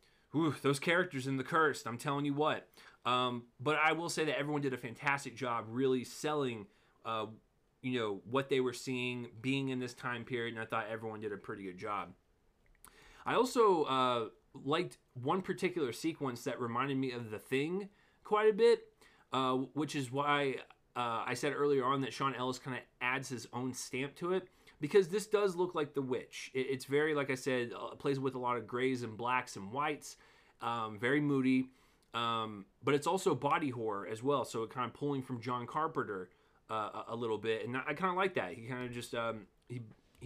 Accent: American